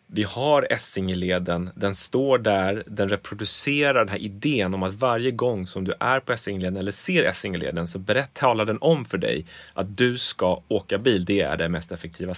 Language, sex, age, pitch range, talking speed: English, male, 30-49, 95-125 Hz, 190 wpm